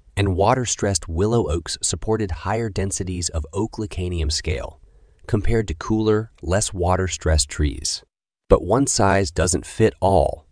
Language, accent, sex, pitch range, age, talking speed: English, American, male, 80-100 Hz, 30-49, 120 wpm